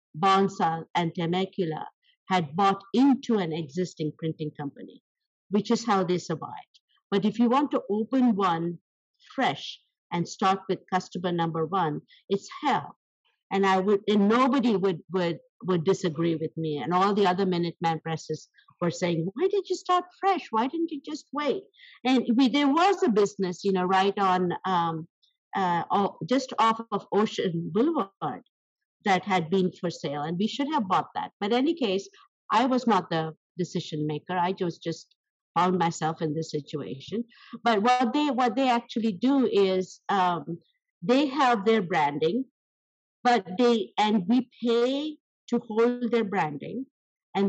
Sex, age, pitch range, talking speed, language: female, 50-69, 175-250 Hz, 165 wpm, English